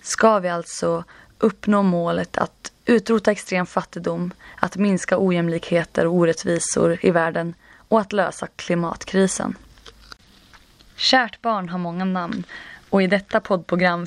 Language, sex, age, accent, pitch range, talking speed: Swedish, female, 20-39, native, 170-195 Hz, 125 wpm